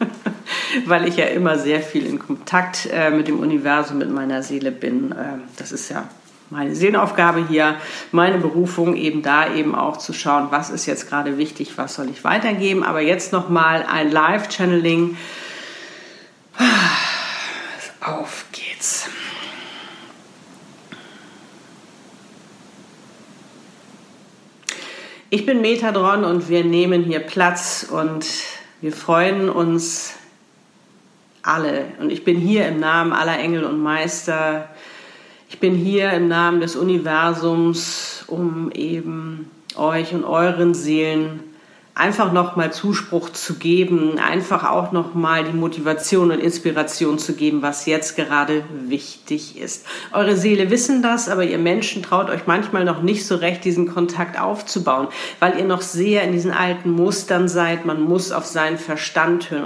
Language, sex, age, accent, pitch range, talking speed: German, female, 50-69, German, 160-195 Hz, 135 wpm